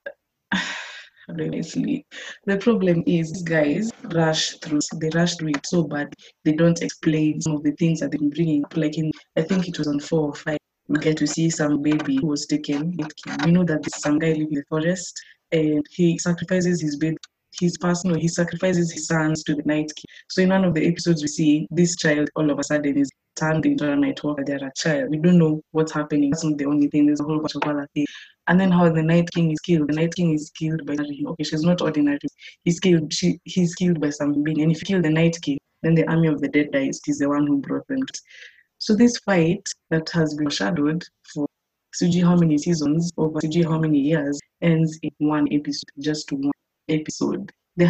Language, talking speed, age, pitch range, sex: English, 225 wpm, 20-39, 150-170 Hz, female